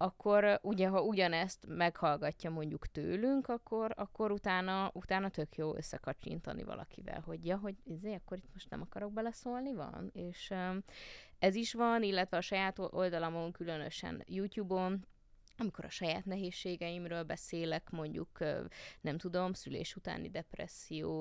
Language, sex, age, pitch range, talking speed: Hungarian, female, 20-39, 160-195 Hz, 140 wpm